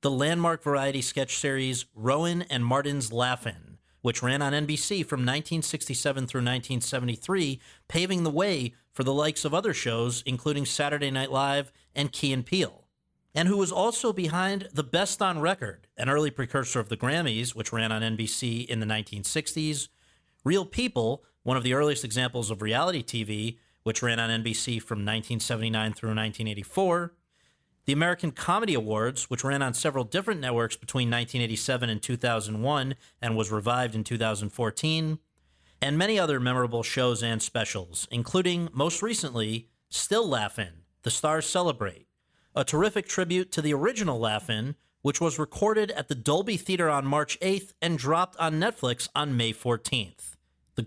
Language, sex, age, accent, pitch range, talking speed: English, male, 40-59, American, 115-155 Hz, 155 wpm